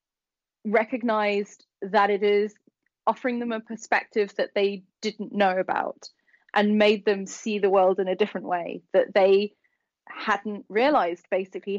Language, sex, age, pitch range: English, female, 20-39, 195-235 Hz